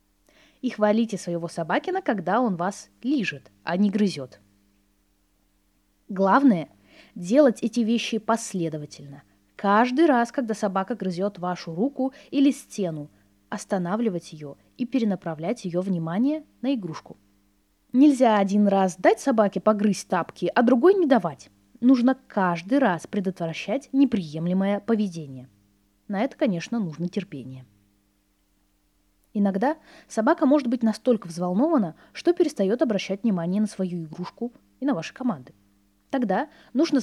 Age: 20-39